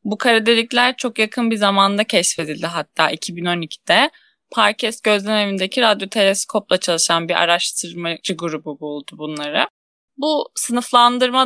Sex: female